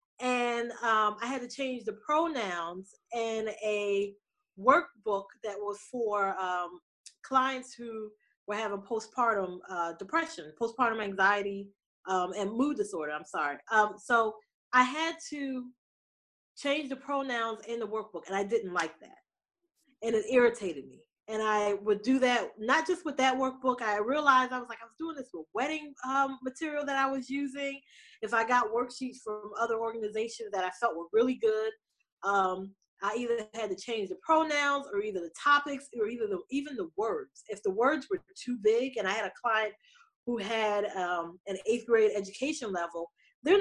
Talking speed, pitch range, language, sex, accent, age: 175 wpm, 210-275 Hz, English, female, American, 20-39